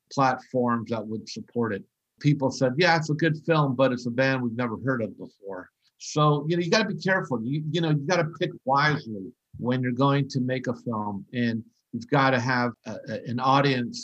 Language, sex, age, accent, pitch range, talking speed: English, male, 50-69, American, 125-145 Hz, 225 wpm